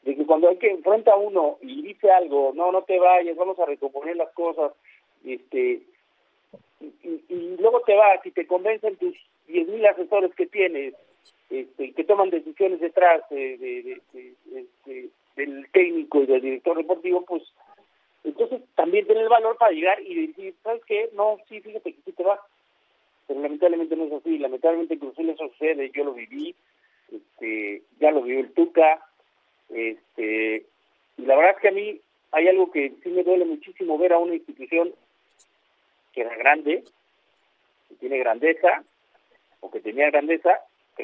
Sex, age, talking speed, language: male, 50-69, 175 wpm, Spanish